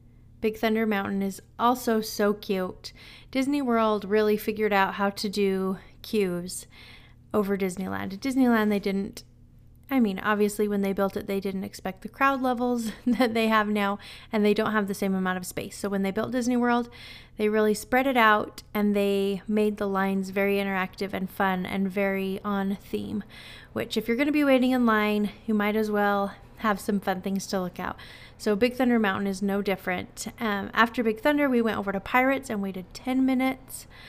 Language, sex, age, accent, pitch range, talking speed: English, female, 30-49, American, 195-225 Hz, 195 wpm